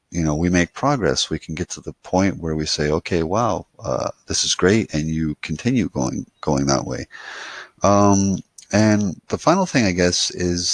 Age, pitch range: 30-49, 80-100 Hz